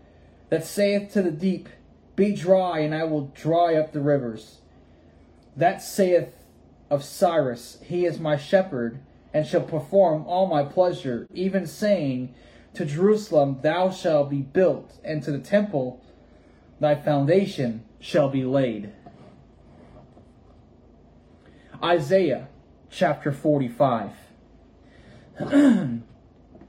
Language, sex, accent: English, male, American